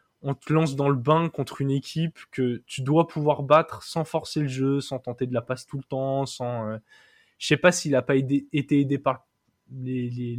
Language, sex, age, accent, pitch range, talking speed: French, male, 20-39, French, 130-160 Hz, 225 wpm